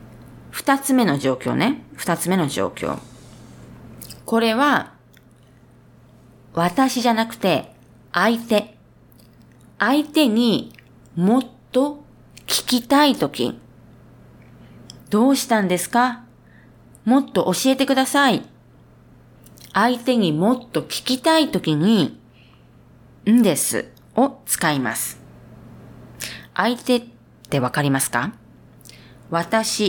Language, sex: Japanese, female